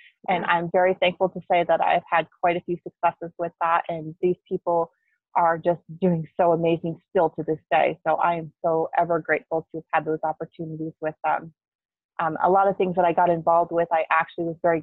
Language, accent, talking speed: English, American, 220 wpm